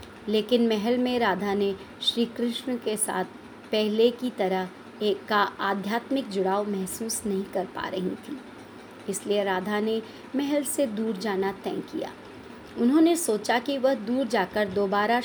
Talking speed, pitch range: 150 wpm, 200-240 Hz